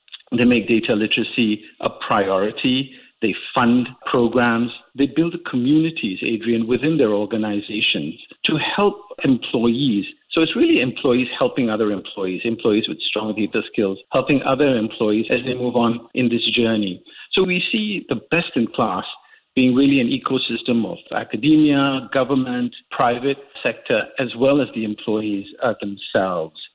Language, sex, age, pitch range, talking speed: English, male, 50-69, 115-155 Hz, 140 wpm